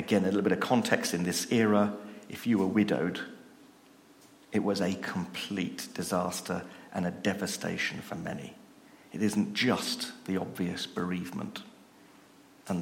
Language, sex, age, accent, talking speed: English, male, 40-59, British, 140 wpm